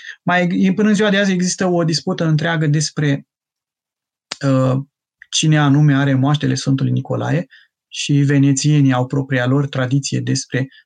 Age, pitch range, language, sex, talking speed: 20-39, 135-150 Hz, Romanian, male, 140 wpm